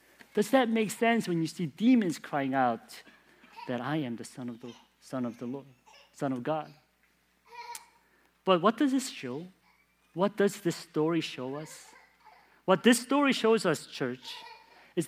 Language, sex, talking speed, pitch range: English, male, 165 wpm, 145-235 Hz